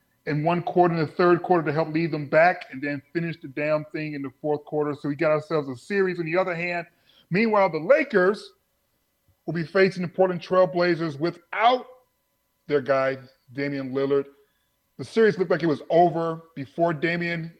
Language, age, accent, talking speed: English, 30-49, American, 190 wpm